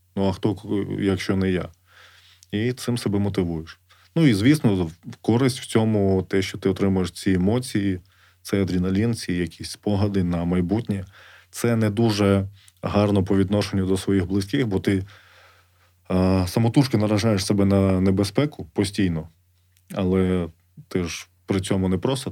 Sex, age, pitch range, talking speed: male, 20-39, 90-105 Hz, 145 wpm